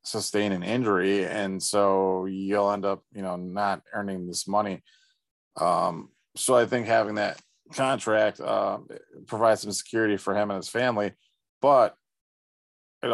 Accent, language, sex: American, English, male